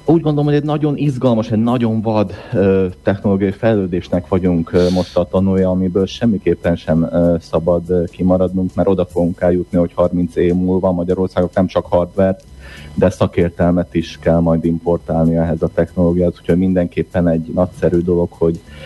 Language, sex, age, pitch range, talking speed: Hungarian, male, 30-49, 80-95 Hz, 160 wpm